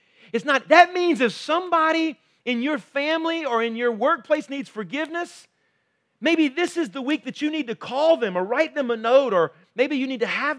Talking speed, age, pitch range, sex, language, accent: 210 wpm, 40-59, 165-250 Hz, male, English, American